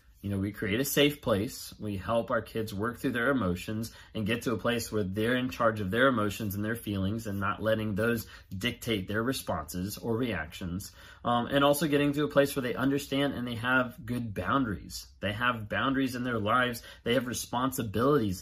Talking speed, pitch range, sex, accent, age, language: 205 wpm, 95-140 Hz, male, American, 30-49, English